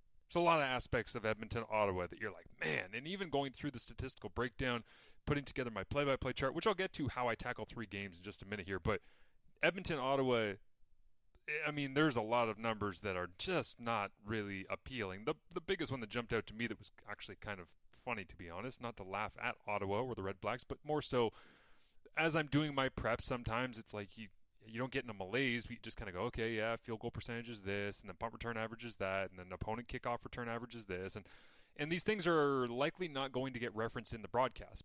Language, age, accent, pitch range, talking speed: English, 30-49, American, 100-135 Hz, 245 wpm